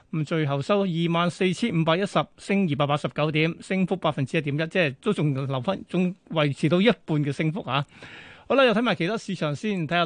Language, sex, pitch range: Chinese, male, 155-195 Hz